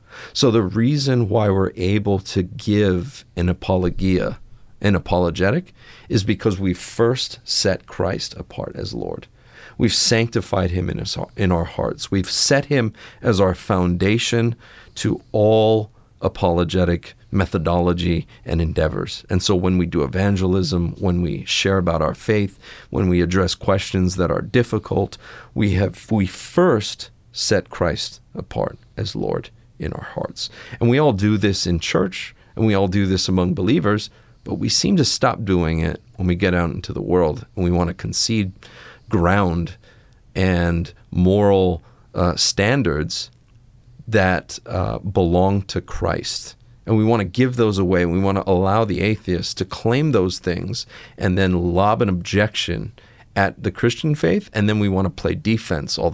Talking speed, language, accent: 160 wpm, English, American